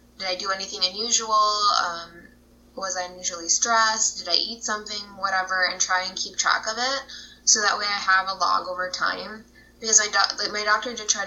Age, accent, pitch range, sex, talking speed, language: 10-29, American, 180-210 Hz, female, 210 wpm, English